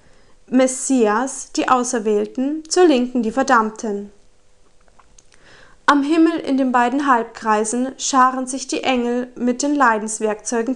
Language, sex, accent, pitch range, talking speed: Italian, female, German, 240-295 Hz, 110 wpm